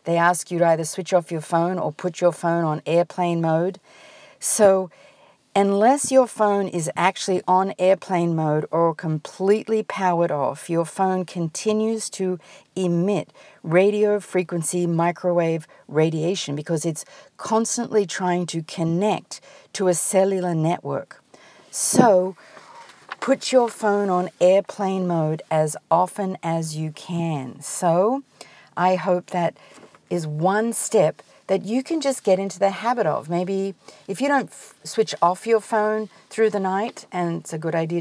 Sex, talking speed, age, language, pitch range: female, 145 wpm, 50-69, English, 165-210 Hz